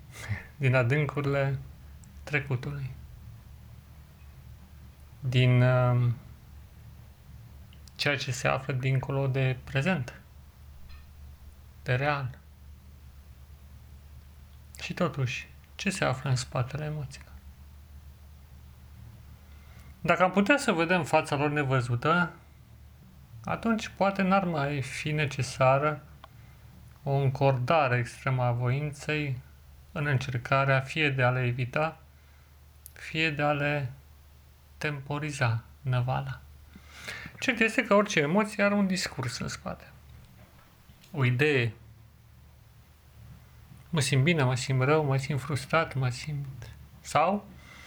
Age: 30-49